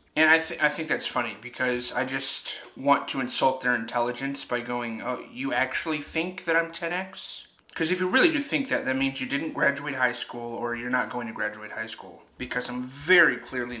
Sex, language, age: male, English, 30-49